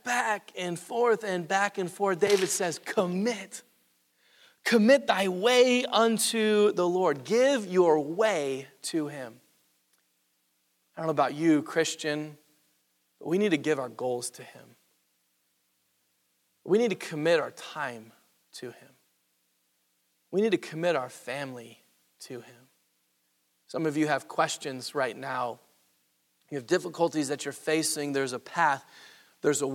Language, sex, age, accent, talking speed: English, male, 30-49, American, 140 wpm